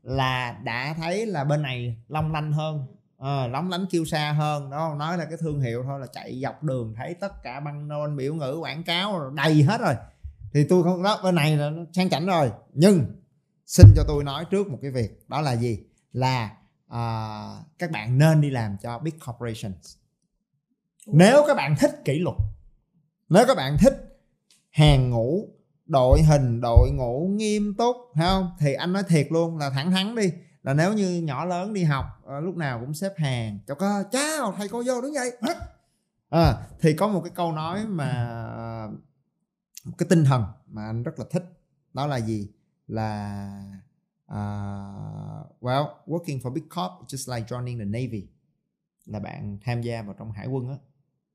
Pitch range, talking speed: 120-175 Hz, 185 wpm